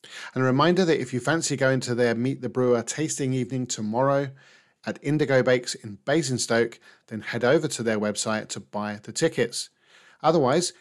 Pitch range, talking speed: 115-140 Hz, 180 wpm